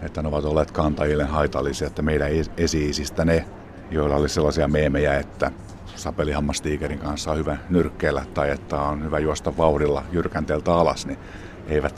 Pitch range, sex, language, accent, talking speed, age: 75-95 Hz, male, Finnish, native, 150 wpm, 50-69